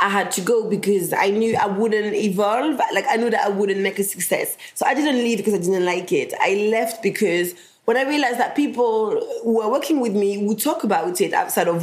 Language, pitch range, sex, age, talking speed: English, 190-245 Hz, female, 20-39, 240 wpm